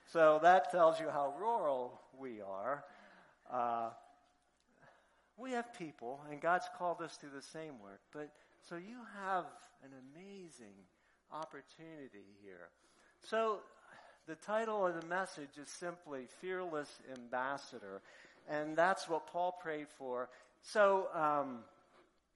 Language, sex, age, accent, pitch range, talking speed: English, male, 50-69, American, 125-175 Hz, 125 wpm